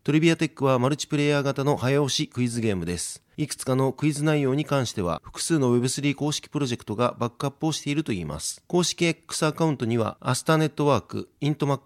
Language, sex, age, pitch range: Japanese, male, 30-49, 120-150 Hz